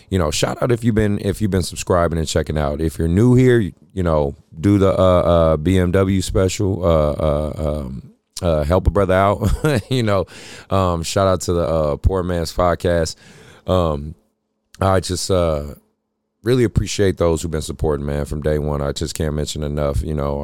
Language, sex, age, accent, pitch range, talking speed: English, male, 30-49, American, 75-95 Hz, 195 wpm